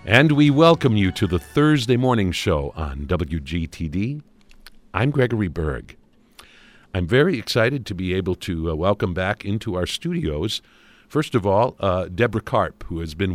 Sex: male